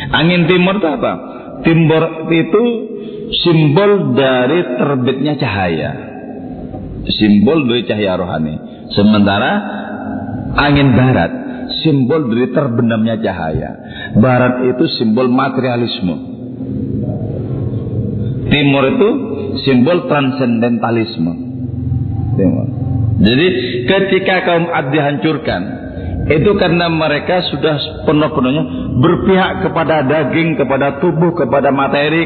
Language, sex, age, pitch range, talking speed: Indonesian, male, 50-69, 115-155 Hz, 85 wpm